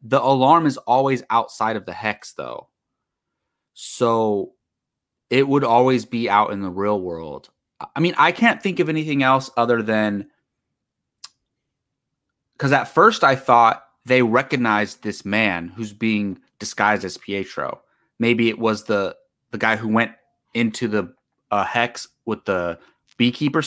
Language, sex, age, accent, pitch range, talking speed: English, male, 30-49, American, 110-140 Hz, 145 wpm